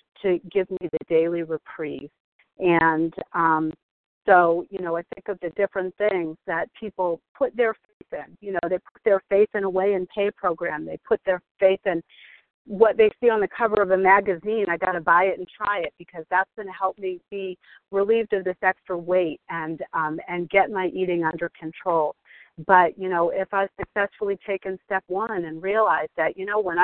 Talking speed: 205 wpm